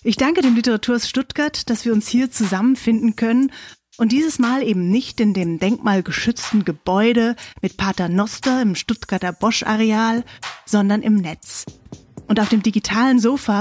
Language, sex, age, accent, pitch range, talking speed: German, female, 30-49, German, 190-240 Hz, 150 wpm